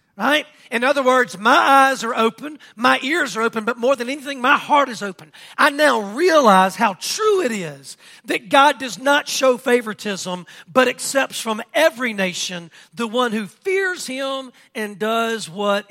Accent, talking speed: American, 170 wpm